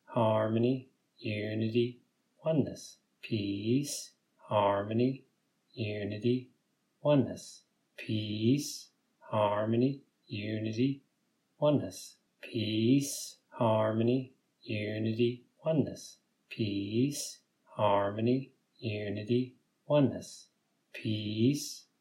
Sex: male